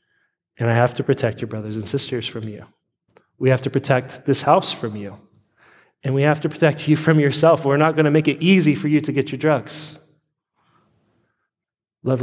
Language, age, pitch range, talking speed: English, 30-49, 120-155 Hz, 200 wpm